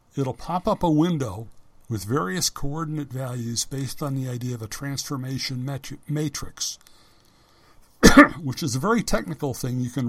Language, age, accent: English, 60-79, American